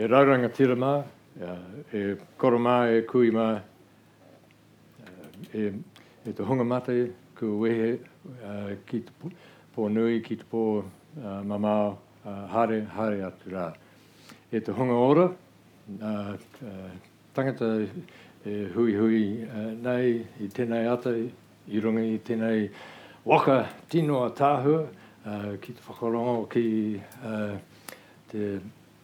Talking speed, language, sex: 85 wpm, English, male